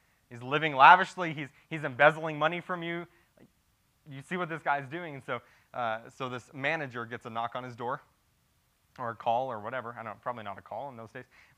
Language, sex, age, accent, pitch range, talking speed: English, male, 20-39, American, 105-140 Hz, 230 wpm